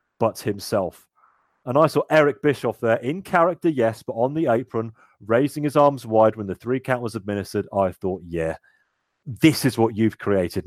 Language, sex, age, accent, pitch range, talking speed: English, male, 30-49, British, 105-140 Hz, 185 wpm